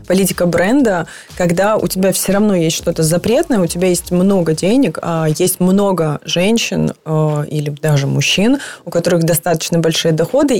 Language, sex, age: Ukrainian, female, 20-39